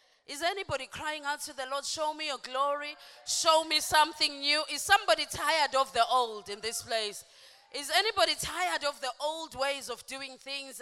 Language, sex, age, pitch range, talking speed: English, female, 20-39, 215-290 Hz, 190 wpm